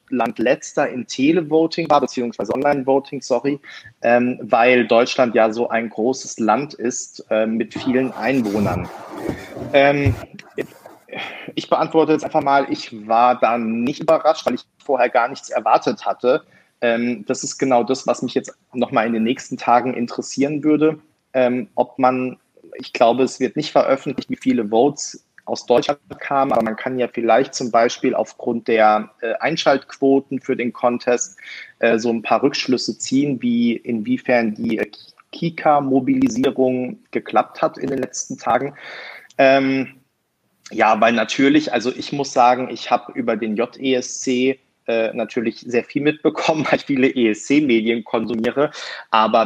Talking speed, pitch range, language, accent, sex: 150 wpm, 115-135 Hz, German, German, male